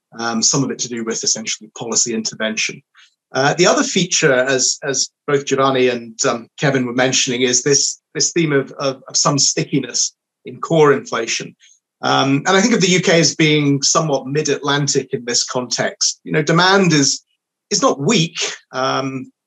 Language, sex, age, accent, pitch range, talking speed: English, male, 30-49, British, 125-155 Hz, 180 wpm